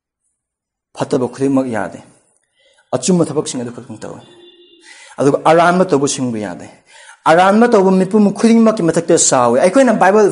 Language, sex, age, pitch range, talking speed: English, male, 30-49, 135-210 Hz, 120 wpm